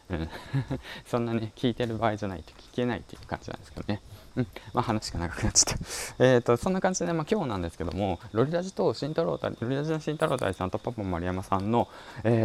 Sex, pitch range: male, 90-125 Hz